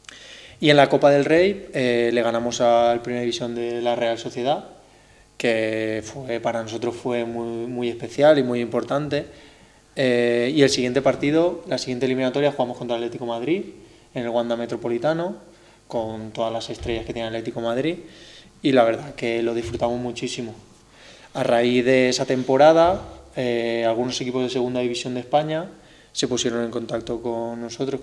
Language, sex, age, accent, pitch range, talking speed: Greek, male, 20-39, Spanish, 115-135 Hz, 165 wpm